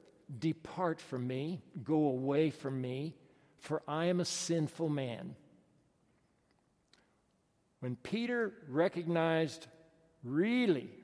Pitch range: 140-170 Hz